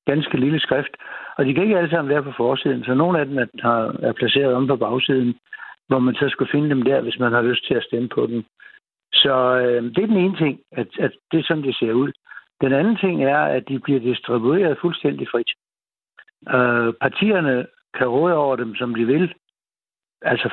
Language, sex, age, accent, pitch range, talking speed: Danish, male, 60-79, native, 125-160 Hz, 215 wpm